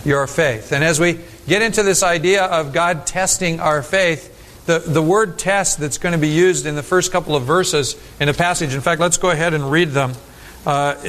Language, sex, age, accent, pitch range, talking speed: English, male, 50-69, American, 140-170 Hz, 220 wpm